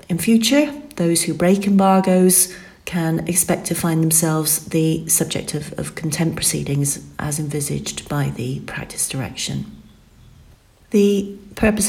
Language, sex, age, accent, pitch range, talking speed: English, female, 40-59, British, 150-185 Hz, 125 wpm